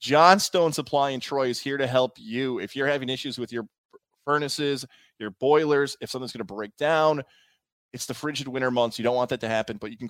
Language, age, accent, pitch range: English, 20-39, American, 115-140 Hz